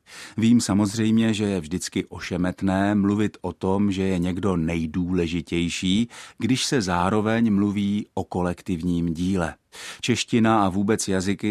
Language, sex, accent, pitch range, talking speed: Czech, male, native, 90-110 Hz, 125 wpm